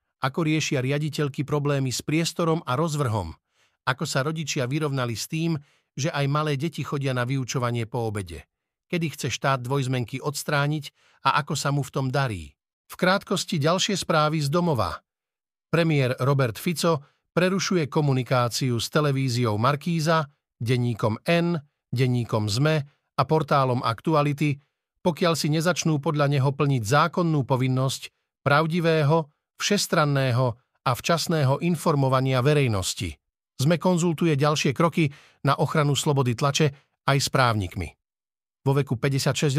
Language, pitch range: Slovak, 130-160 Hz